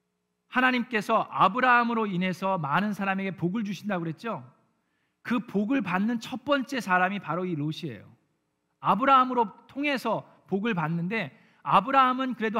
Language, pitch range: Korean, 150-225 Hz